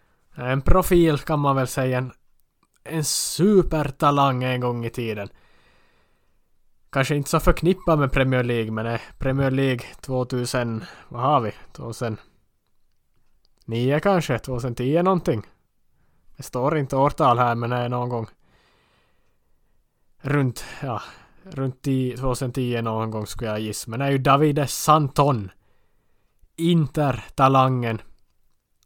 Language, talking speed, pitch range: Swedish, 120 wpm, 115-145 Hz